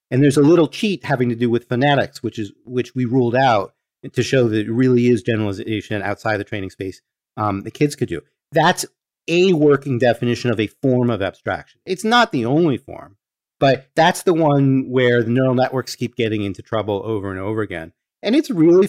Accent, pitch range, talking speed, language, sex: American, 120-150 Hz, 205 wpm, English, male